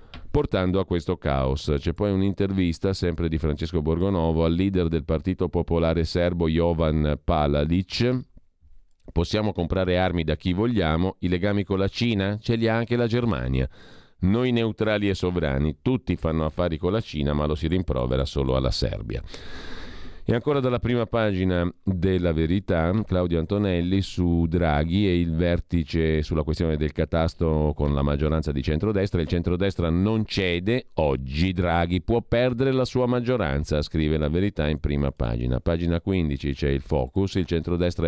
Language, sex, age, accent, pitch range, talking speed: Italian, male, 40-59, native, 80-100 Hz, 160 wpm